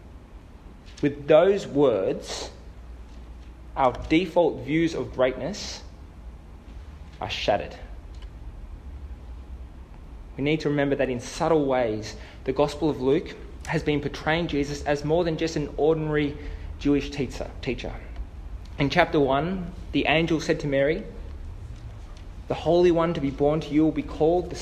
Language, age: English, 20-39